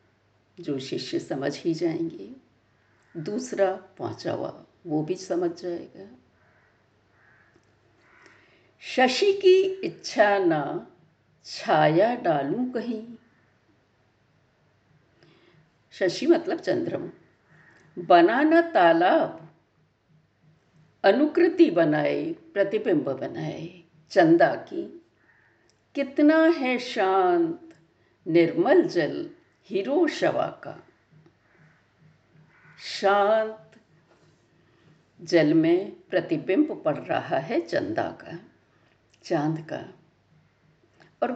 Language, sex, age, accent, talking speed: Hindi, female, 60-79, native, 75 wpm